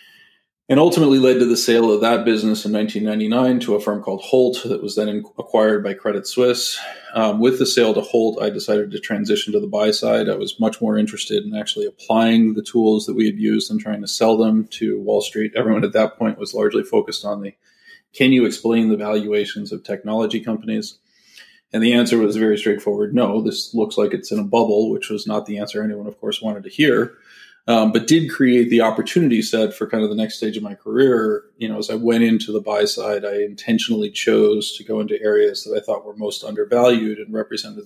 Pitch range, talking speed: 105-130 Hz, 225 wpm